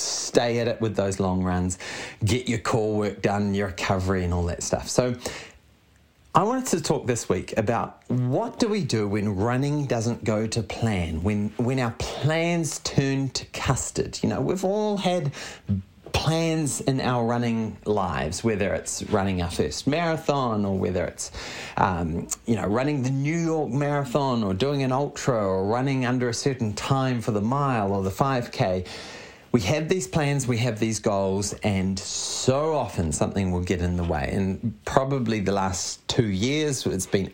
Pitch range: 95-130 Hz